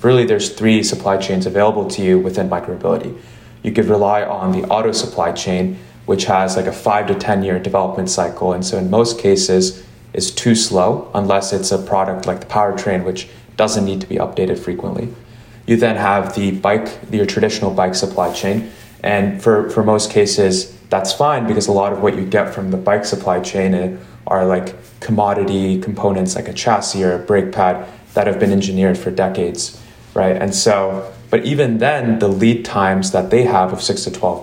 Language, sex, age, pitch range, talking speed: English, male, 20-39, 95-110 Hz, 195 wpm